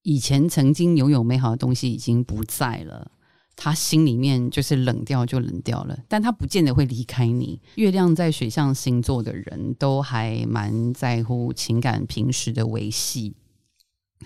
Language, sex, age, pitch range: Chinese, female, 30-49, 120-155 Hz